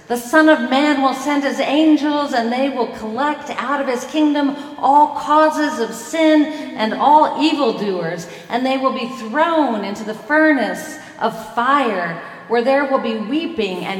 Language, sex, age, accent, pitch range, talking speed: English, female, 40-59, American, 200-270 Hz, 165 wpm